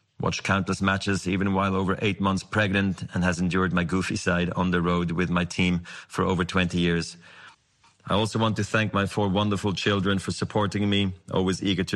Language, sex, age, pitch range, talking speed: English, male, 30-49, 90-105 Hz, 200 wpm